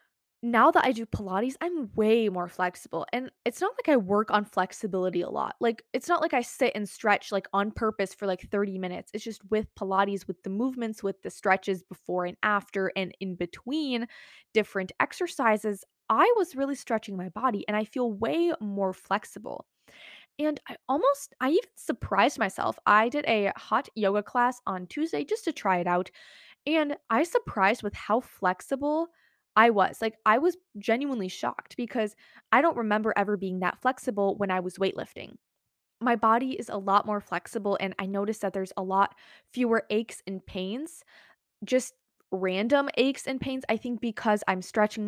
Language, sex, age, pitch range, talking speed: English, female, 20-39, 195-250 Hz, 180 wpm